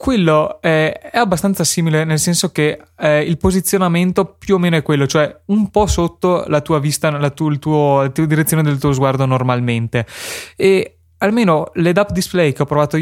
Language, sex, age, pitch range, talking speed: Italian, male, 20-39, 135-160 Hz, 190 wpm